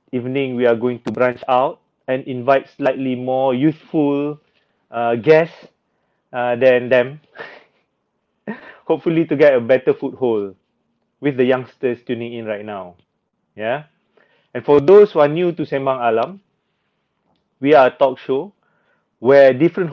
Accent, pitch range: Malaysian, 120-145 Hz